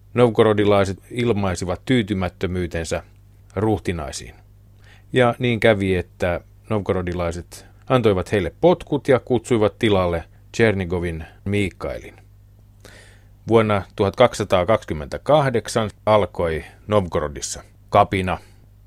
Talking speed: 70 wpm